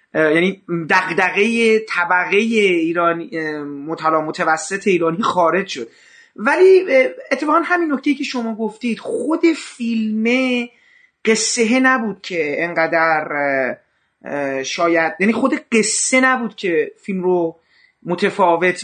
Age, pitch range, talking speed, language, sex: 30-49, 175-230 Hz, 100 wpm, Persian, male